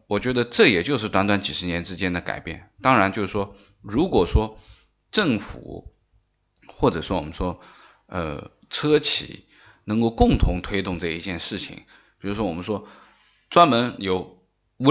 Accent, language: native, Chinese